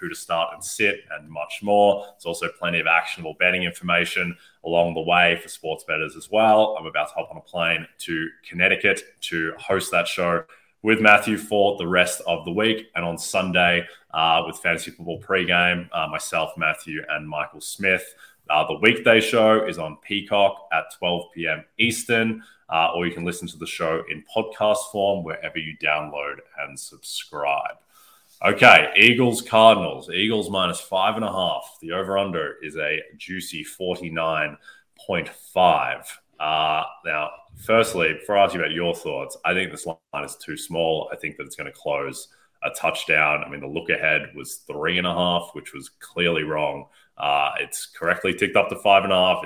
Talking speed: 165 wpm